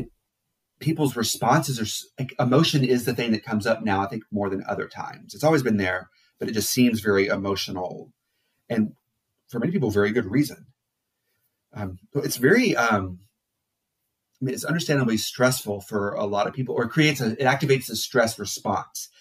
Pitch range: 100-125 Hz